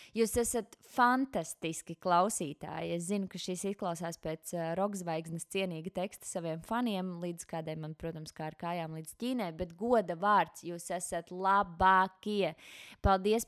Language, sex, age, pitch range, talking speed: English, female, 20-39, 175-220 Hz, 145 wpm